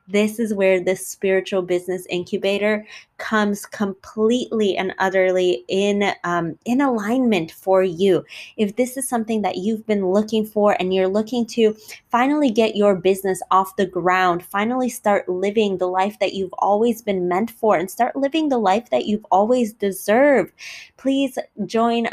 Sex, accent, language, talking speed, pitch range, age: female, American, English, 155 wpm, 190-220 Hz, 20-39